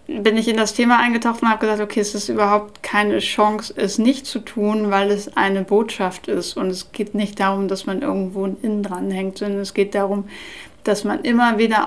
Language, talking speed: German, 215 wpm